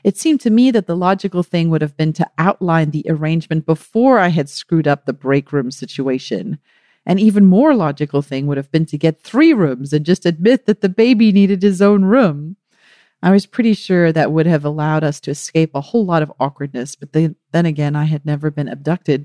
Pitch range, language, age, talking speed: 150-205 Hz, English, 40-59, 220 wpm